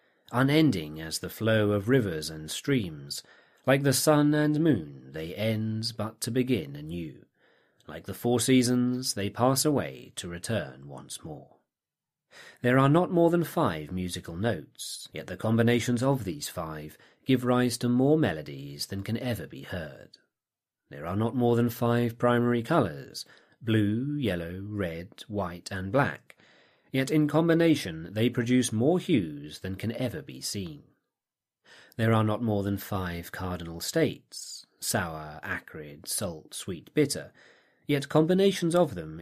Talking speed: 150 wpm